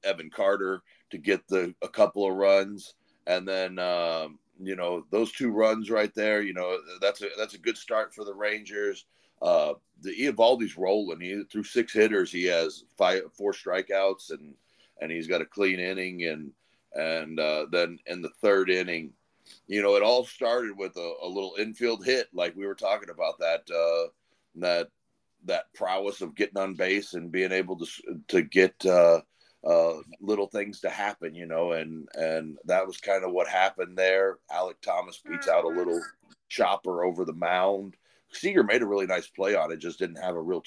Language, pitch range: English, 90-105 Hz